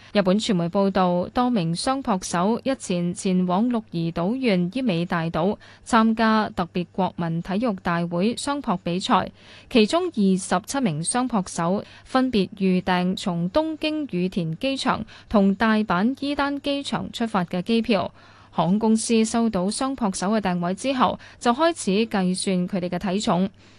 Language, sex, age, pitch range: Chinese, female, 10-29, 180-240 Hz